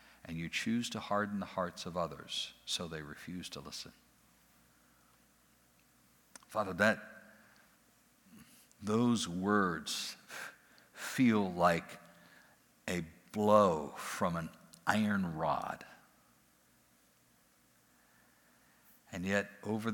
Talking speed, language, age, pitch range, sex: 85 wpm, English, 60-79, 80-110 Hz, male